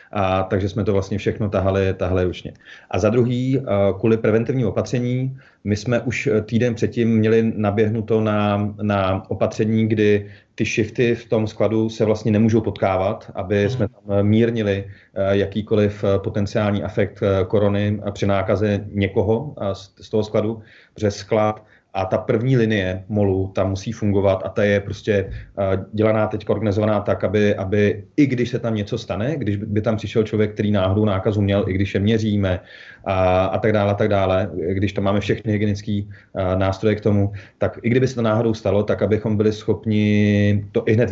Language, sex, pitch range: Czech, male, 100-110 Hz